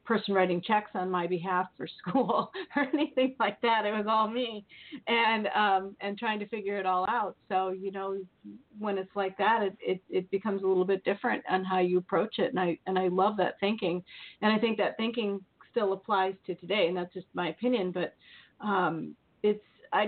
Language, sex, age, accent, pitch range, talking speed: English, female, 40-59, American, 185-220 Hz, 210 wpm